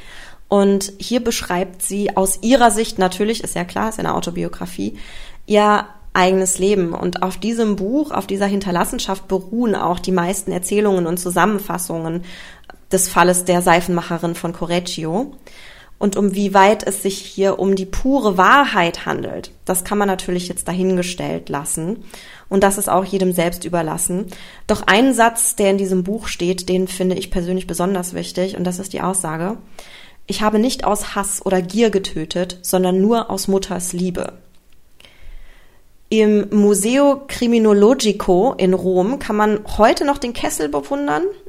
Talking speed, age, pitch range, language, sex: 155 wpm, 20-39, 180-205 Hz, German, female